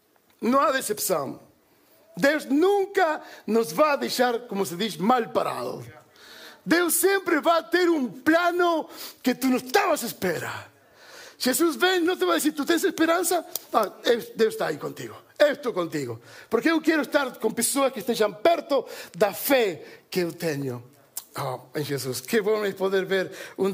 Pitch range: 170-280 Hz